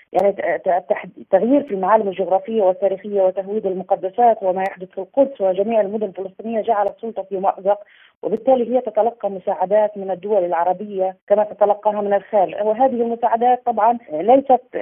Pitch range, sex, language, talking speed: 195-235 Hz, female, Arabic, 140 wpm